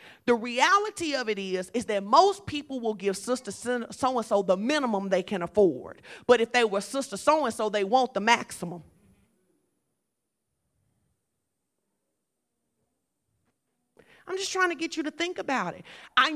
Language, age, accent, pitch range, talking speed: English, 40-59, American, 205-280 Hz, 145 wpm